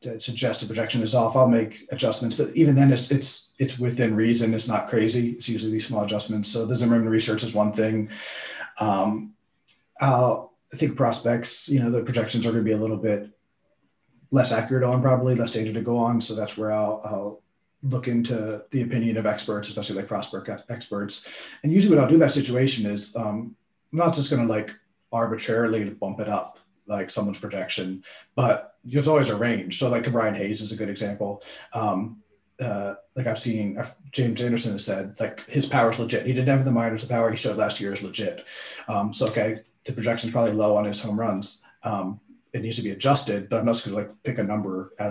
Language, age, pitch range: English, 30-49, 105-125 Hz